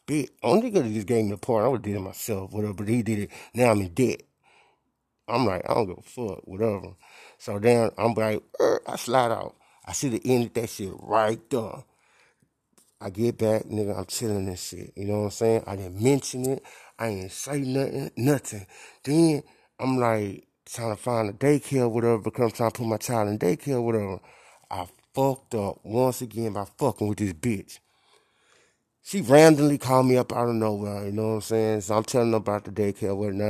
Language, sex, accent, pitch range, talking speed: English, male, American, 105-125 Hz, 215 wpm